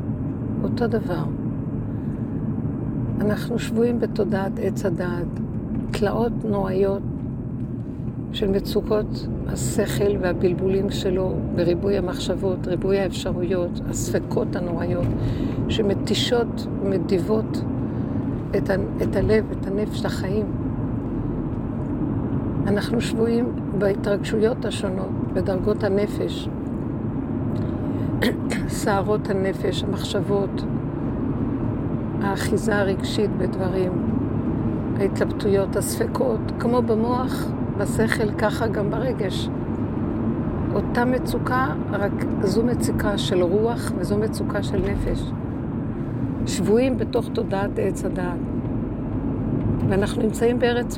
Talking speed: 80 wpm